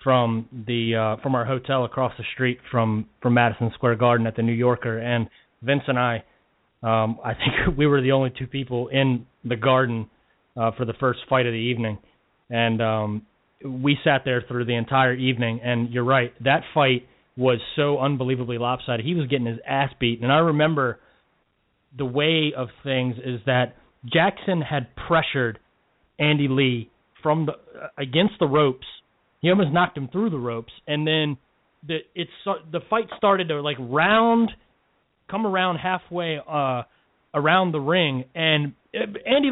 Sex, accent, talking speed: male, American, 170 wpm